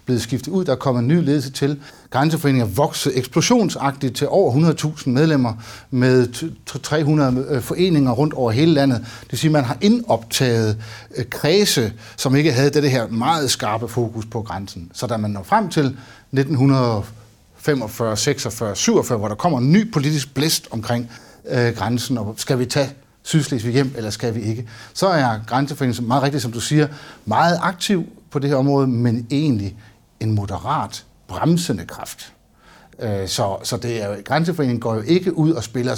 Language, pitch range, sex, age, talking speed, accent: Danish, 115-150 Hz, male, 60-79, 170 wpm, native